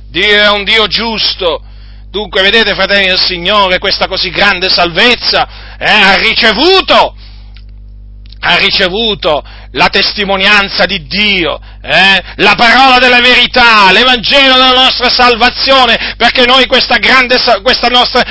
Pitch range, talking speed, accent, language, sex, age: 170-245 Hz, 125 wpm, native, Italian, male, 40-59